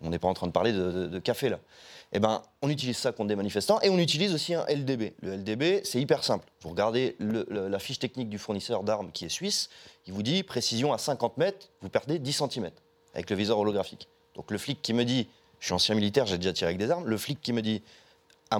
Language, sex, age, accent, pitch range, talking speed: French, male, 30-49, French, 100-135 Hz, 260 wpm